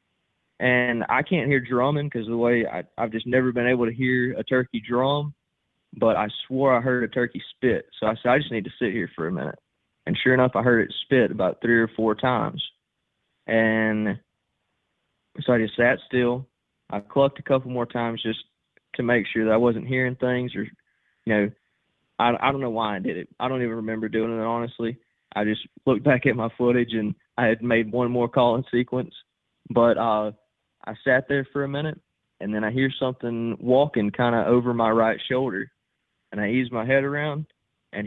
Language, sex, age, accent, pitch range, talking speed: English, male, 20-39, American, 115-130 Hz, 210 wpm